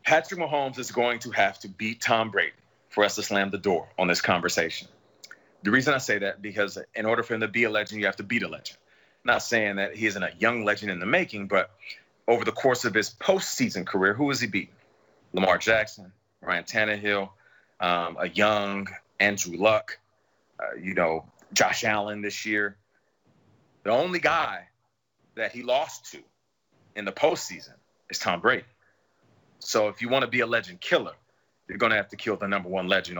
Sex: male